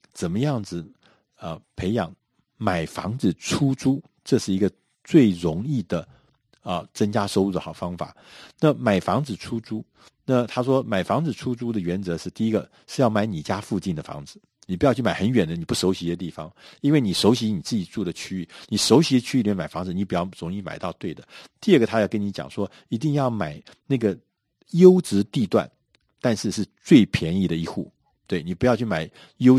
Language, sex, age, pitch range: Chinese, male, 50-69, 90-125 Hz